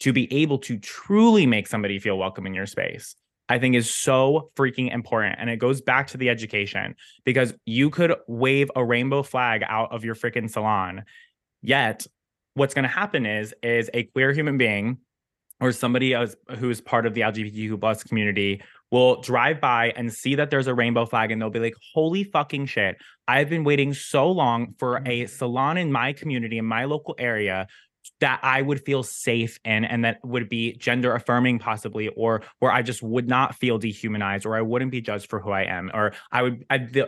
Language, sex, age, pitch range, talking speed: English, male, 20-39, 115-135 Hz, 200 wpm